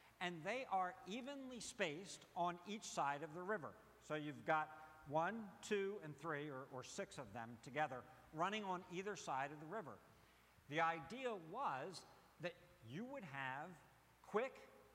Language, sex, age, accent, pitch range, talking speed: English, male, 60-79, American, 145-200 Hz, 155 wpm